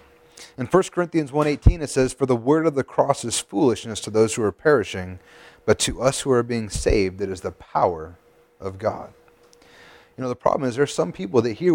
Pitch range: 110-145 Hz